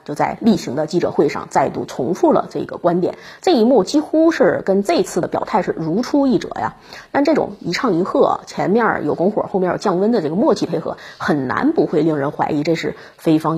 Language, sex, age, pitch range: Chinese, female, 30-49, 175-240 Hz